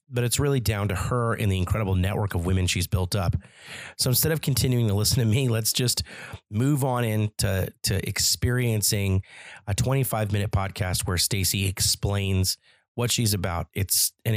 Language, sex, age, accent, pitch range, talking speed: English, male, 30-49, American, 95-120 Hz, 170 wpm